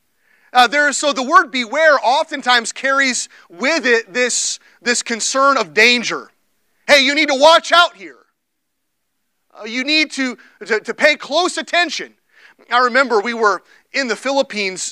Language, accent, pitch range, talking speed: English, American, 225-275 Hz, 150 wpm